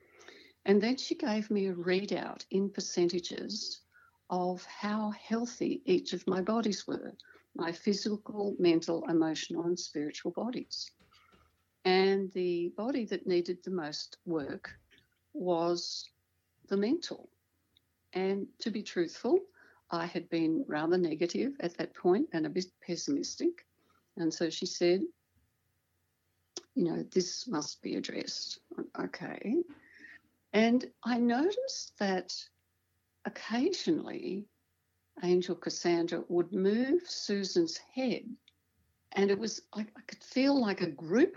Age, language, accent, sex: 60-79, English, Australian, female